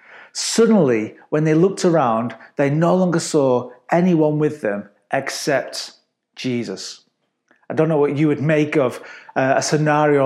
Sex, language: male, English